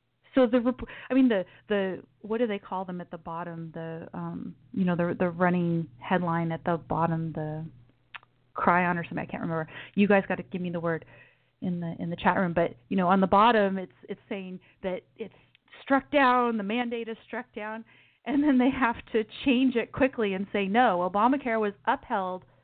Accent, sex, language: American, female, English